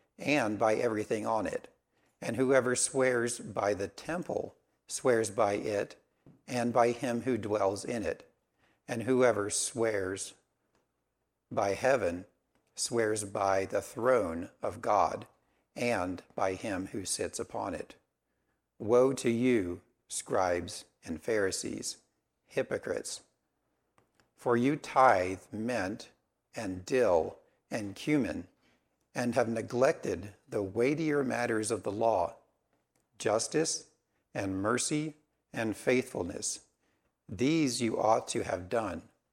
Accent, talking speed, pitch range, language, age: American, 115 wpm, 100-130 Hz, English, 60-79